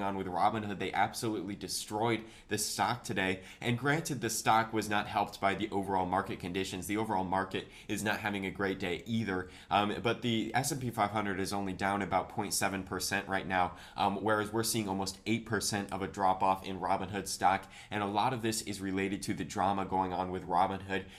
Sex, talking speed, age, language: male, 200 wpm, 20-39, English